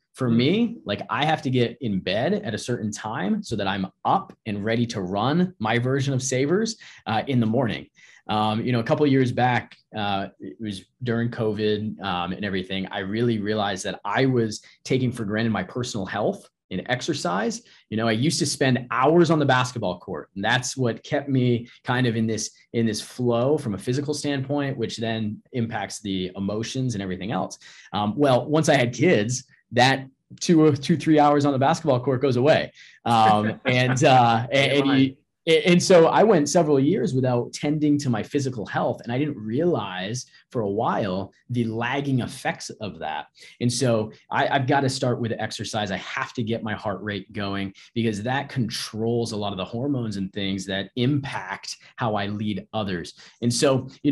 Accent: American